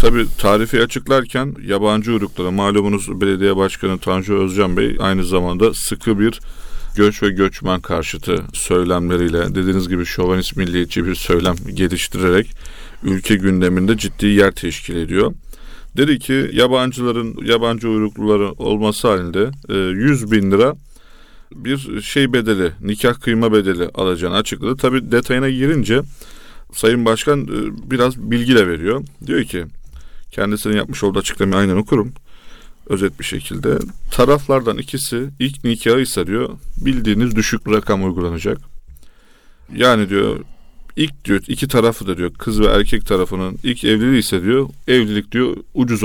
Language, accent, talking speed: Turkish, native, 130 wpm